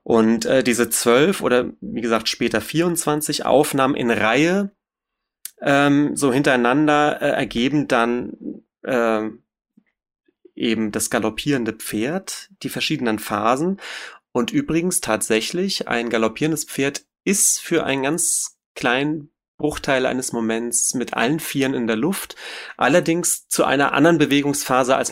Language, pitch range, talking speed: German, 120-150 Hz, 125 wpm